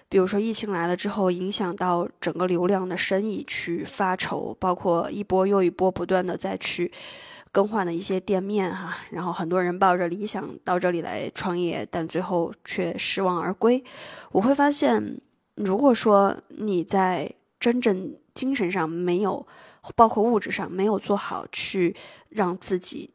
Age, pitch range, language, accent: 20-39, 175-205 Hz, Chinese, native